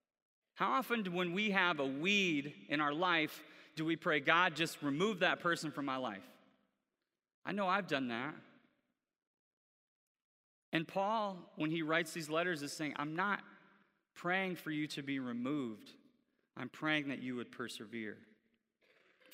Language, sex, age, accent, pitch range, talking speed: English, male, 30-49, American, 135-175 Hz, 155 wpm